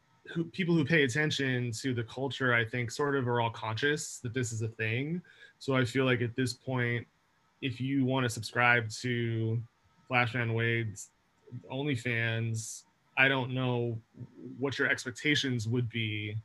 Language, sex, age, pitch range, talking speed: English, male, 20-39, 115-130 Hz, 155 wpm